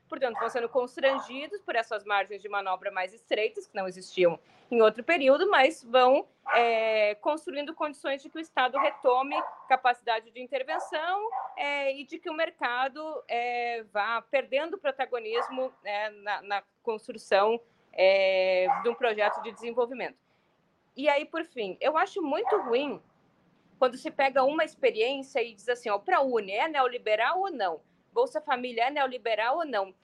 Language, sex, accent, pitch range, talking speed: Portuguese, female, Brazilian, 215-310 Hz, 150 wpm